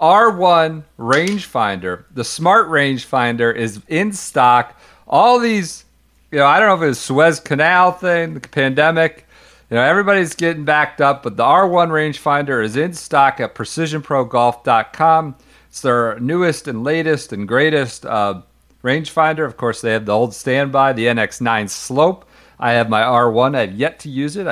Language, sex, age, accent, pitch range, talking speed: English, male, 50-69, American, 115-165 Hz, 160 wpm